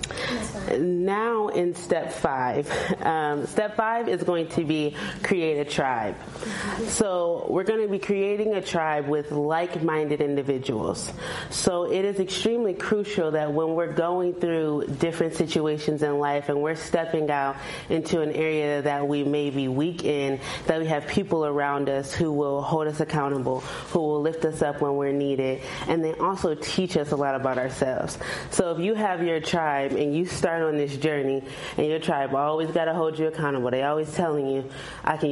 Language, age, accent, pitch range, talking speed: English, 20-39, American, 145-170 Hz, 185 wpm